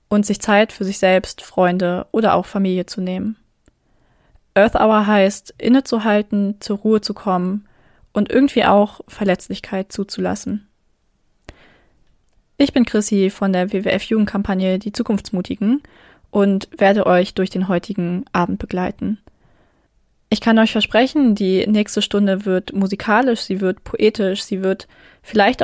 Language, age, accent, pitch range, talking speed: German, 20-39, German, 190-215 Hz, 130 wpm